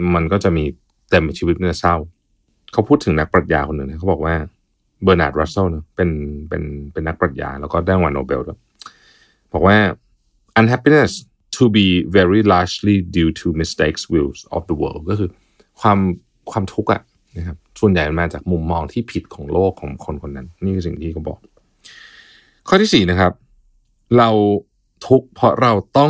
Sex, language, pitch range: male, Thai, 85-110 Hz